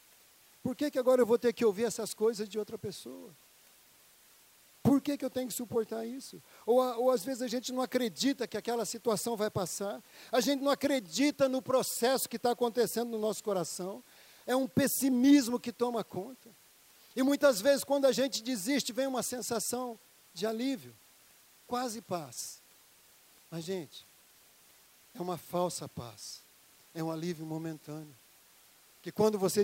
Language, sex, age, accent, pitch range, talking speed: Portuguese, male, 50-69, Brazilian, 160-240 Hz, 160 wpm